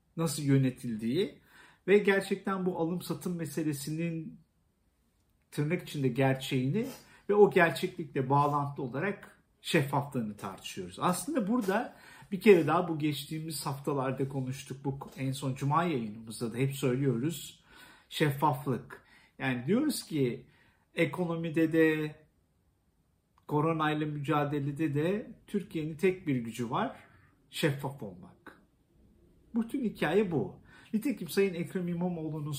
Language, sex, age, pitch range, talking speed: Turkish, male, 50-69, 135-175 Hz, 105 wpm